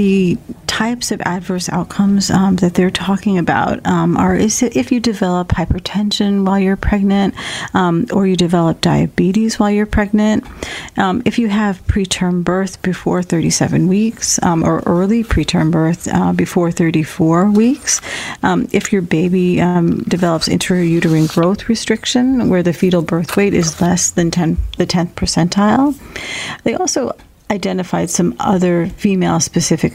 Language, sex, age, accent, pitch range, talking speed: English, female, 40-59, American, 170-205 Hz, 150 wpm